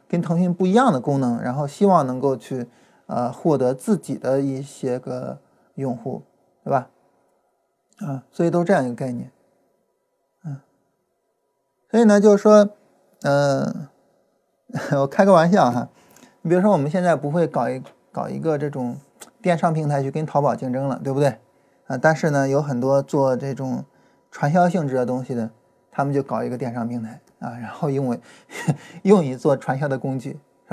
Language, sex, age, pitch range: Chinese, male, 20-39, 130-170 Hz